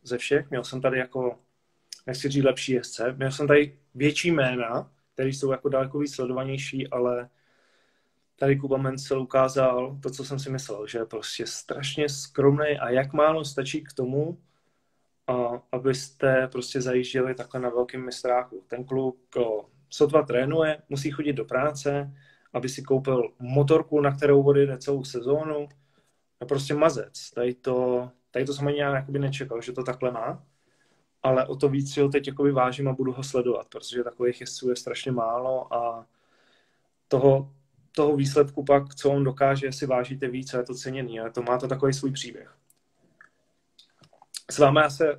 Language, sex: Czech, male